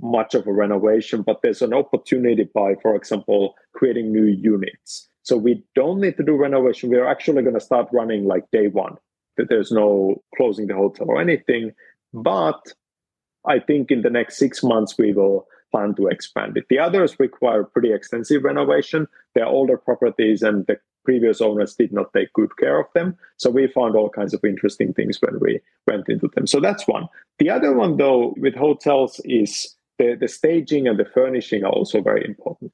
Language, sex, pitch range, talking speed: English, male, 110-150 Hz, 190 wpm